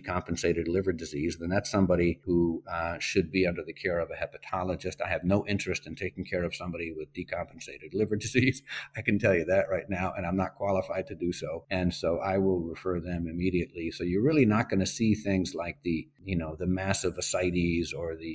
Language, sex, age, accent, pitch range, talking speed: English, male, 50-69, American, 85-100 Hz, 220 wpm